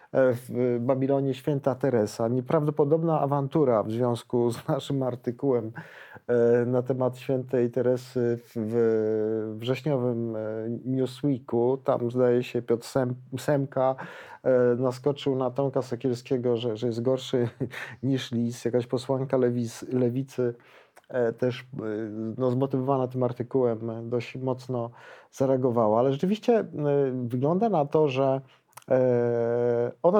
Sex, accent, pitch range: male, native, 125-145 Hz